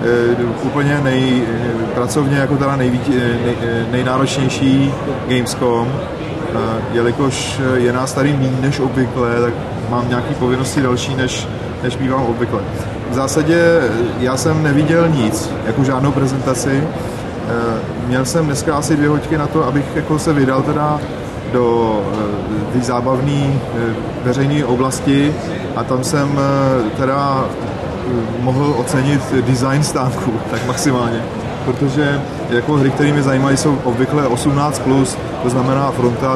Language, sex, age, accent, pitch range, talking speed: Czech, male, 30-49, native, 120-140 Hz, 120 wpm